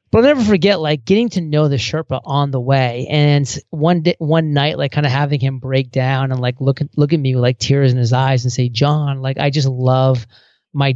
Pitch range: 130-150 Hz